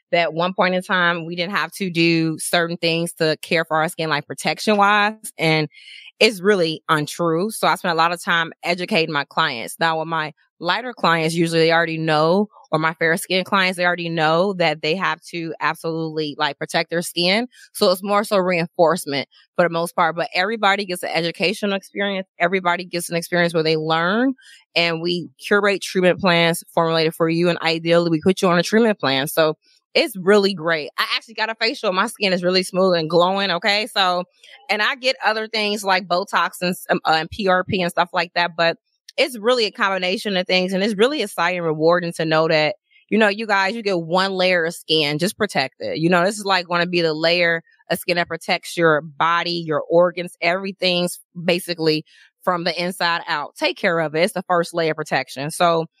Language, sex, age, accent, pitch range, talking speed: English, female, 20-39, American, 165-195 Hz, 210 wpm